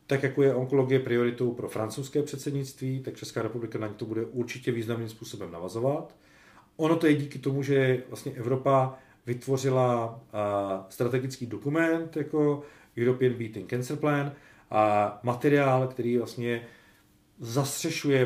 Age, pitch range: 40-59, 115-140 Hz